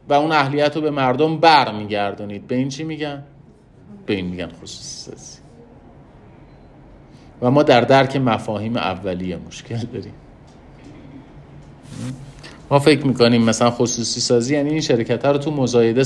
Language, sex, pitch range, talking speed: Persian, male, 120-145 Hz, 140 wpm